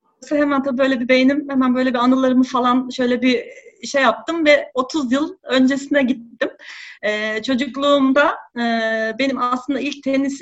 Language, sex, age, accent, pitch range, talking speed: Turkish, female, 40-59, native, 235-305 Hz, 150 wpm